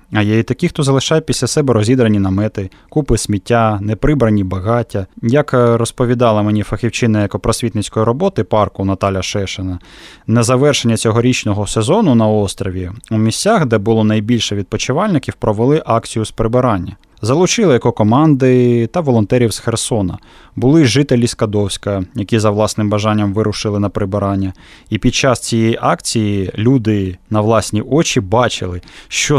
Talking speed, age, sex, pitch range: 135 wpm, 20-39, male, 105-125 Hz